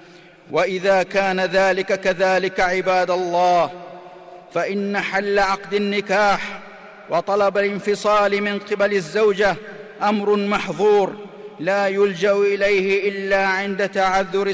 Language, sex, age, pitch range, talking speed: Arabic, male, 50-69, 190-205 Hz, 95 wpm